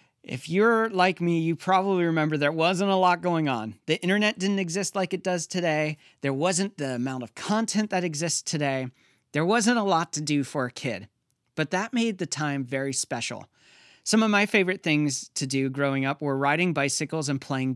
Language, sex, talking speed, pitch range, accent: English, male, 205 wpm, 135-180 Hz, American